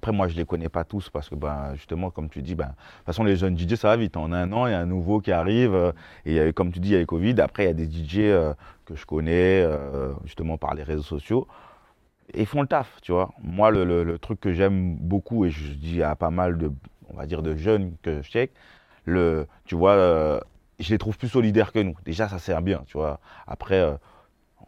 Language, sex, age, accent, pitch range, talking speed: French, male, 30-49, French, 85-105 Hz, 265 wpm